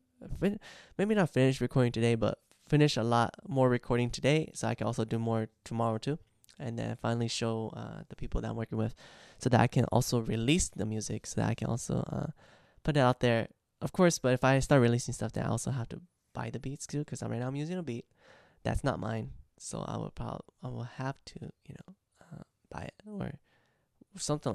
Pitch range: 115-135 Hz